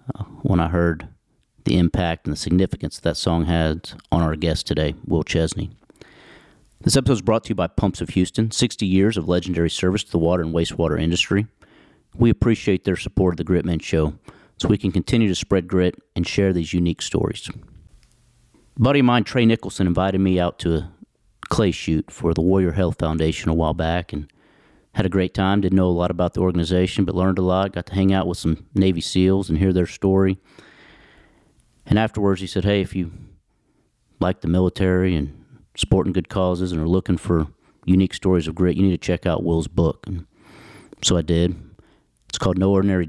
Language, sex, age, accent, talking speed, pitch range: English, male, 40-59, American, 200 wpm, 85-95 Hz